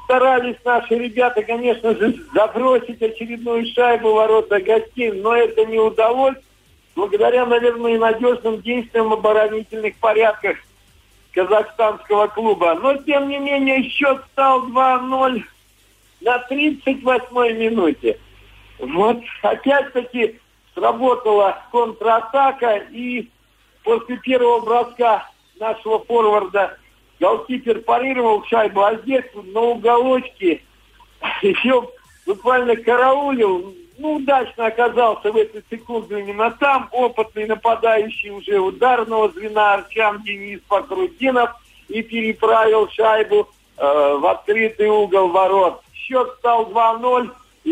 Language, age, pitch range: Russian, 50-69, 215-245 Hz